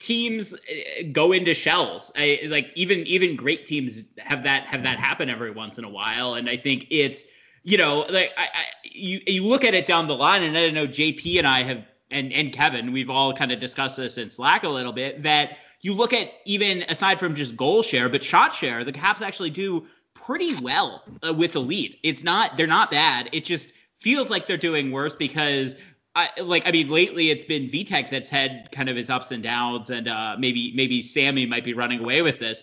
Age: 30-49